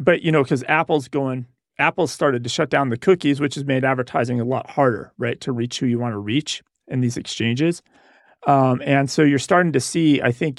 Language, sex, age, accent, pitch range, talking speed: English, male, 40-59, American, 125-160 Hz, 225 wpm